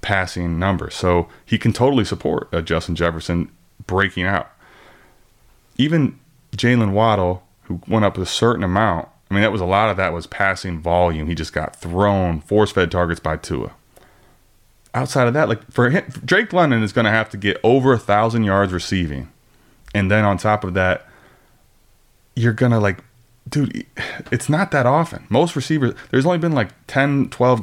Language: English